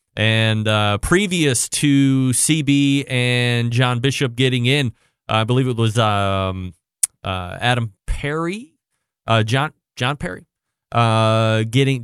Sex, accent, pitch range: male, American, 115-150 Hz